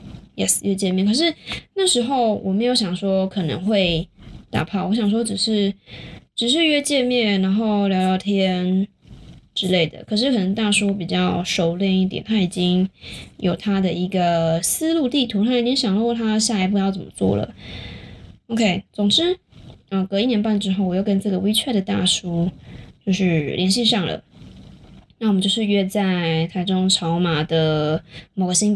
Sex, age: female, 20-39